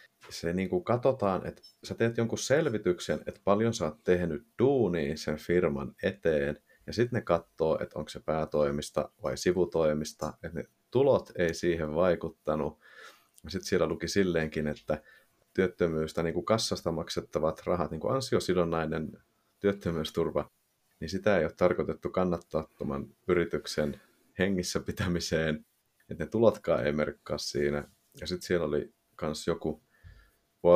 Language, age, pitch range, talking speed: Finnish, 30-49, 80-95 Hz, 140 wpm